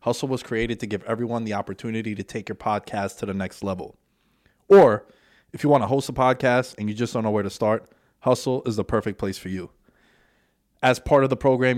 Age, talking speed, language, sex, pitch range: 20-39, 225 wpm, English, male, 105-135 Hz